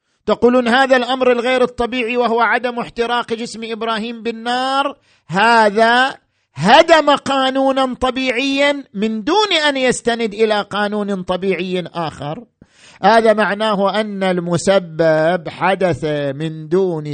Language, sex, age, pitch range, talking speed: Arabic, male, 50-69, 160-225 Hz, 105 wpm